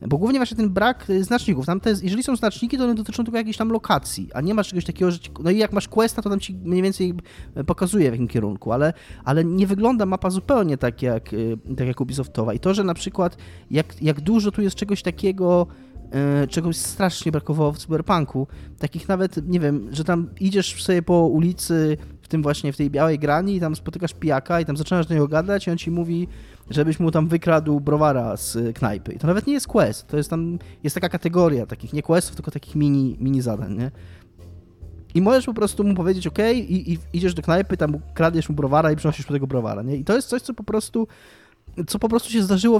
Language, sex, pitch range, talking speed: Polish, male, 135-190 Hz, 225 wpm